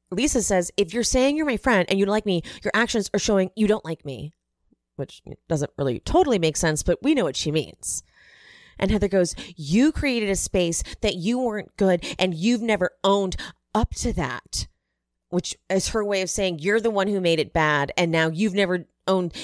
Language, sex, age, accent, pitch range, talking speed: English, female, 30-49, American, 160-215 Hz, 215 wpm